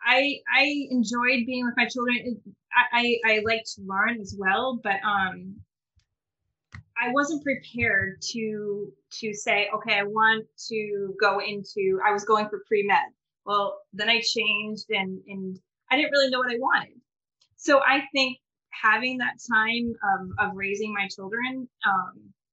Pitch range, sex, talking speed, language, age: 200-235 Hz, female, 155 wpm, English, 20-39